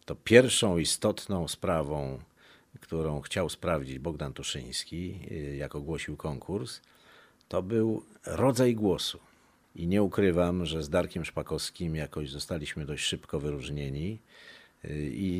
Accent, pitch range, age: native, 75-95 Hz, 50-69